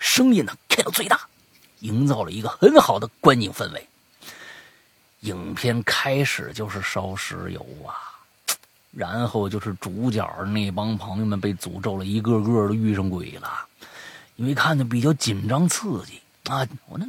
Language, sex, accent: Chinese, male, native